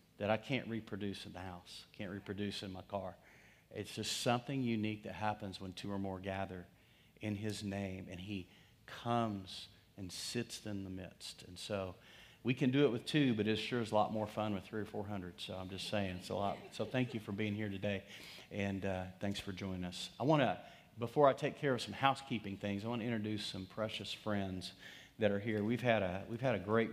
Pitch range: 105-130 Hz